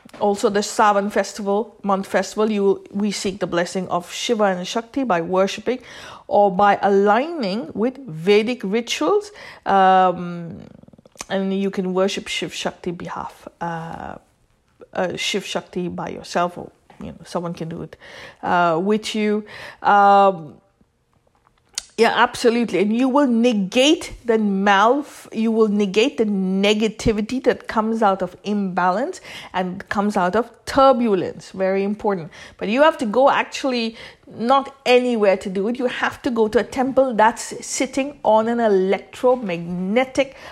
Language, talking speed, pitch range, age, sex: English, 145 wpm, 190-245 Hz, 50-69, female